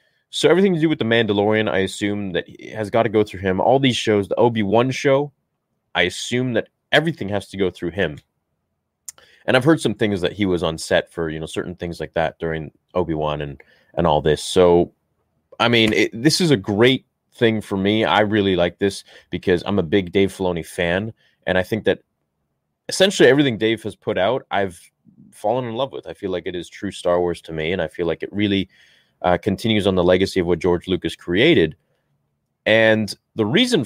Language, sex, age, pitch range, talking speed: English, male, 20-39, 85-110 Hz, 215 wpm